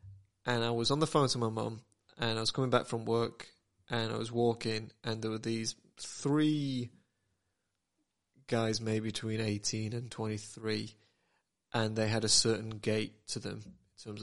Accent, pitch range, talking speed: British, 110-125 Hz, 175 wpm